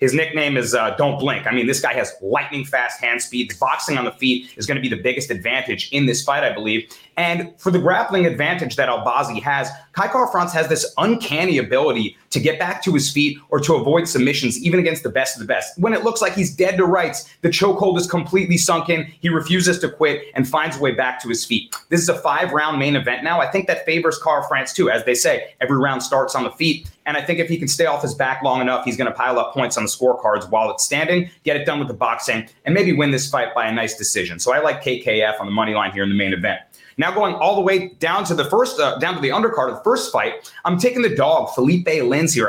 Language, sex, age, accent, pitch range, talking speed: English, male, 30-49, American, 125-175 Hz, 265 wpm